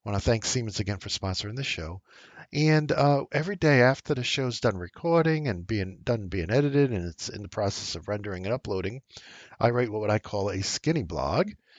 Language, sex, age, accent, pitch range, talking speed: English, male, 50-69, American, 100-135 Hz, 210 wpm